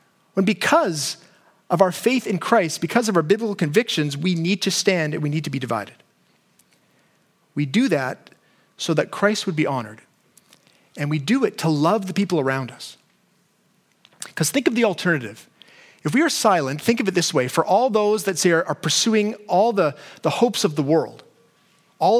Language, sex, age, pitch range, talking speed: English, male, 30-49, 165-215 Hz, 185 wpm